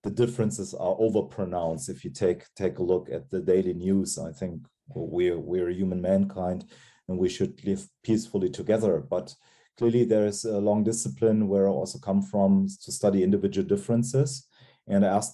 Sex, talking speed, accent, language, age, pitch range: male, 170 wpm, German, English, 40-59, 95-115 Hz